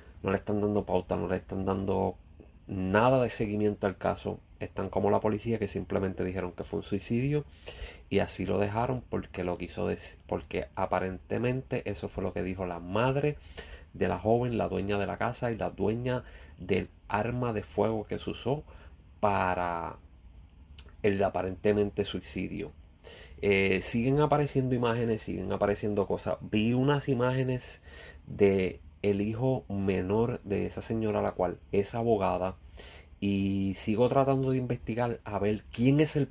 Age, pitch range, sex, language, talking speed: 30-49, 90-115 Hz, male, Spanish, 155 wpm